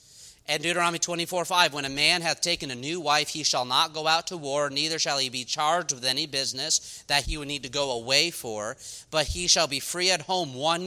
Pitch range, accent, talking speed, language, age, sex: 145-175 Hz, American, 235 wpm, English, 40-59, male